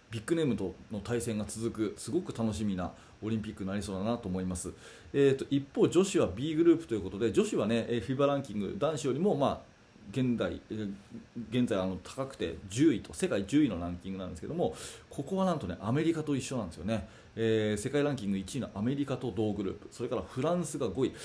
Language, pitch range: Japanese, 105-145 Hz